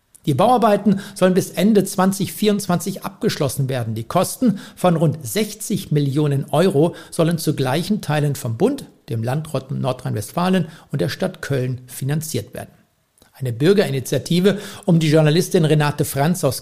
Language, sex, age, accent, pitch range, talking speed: German, male, 60-79, German, 140-180 Hz, 135 wpm